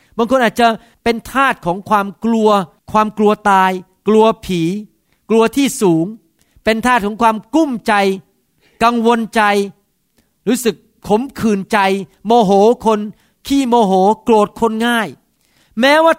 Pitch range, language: 170-225 Hz, Thai